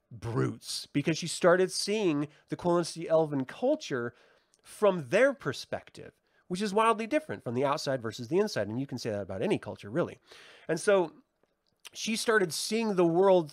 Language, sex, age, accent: English, male, 30-49, American